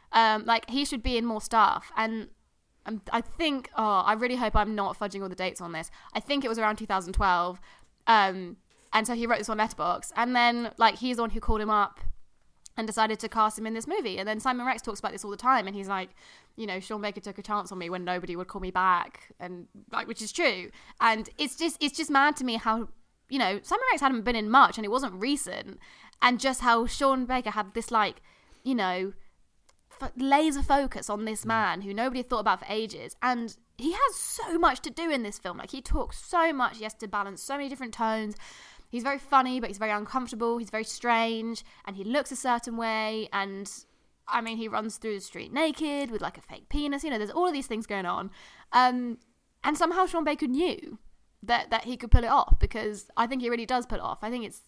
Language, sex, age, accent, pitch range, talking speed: English, female, 20-39, British, 210-260 Hz, 240 wpm